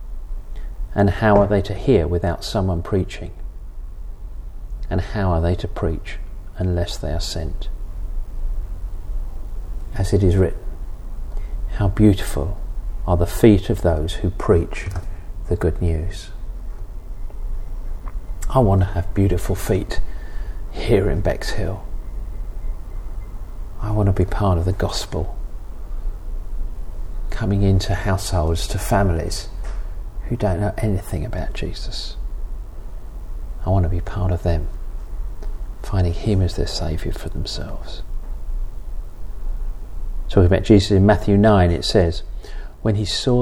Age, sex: 40-59, male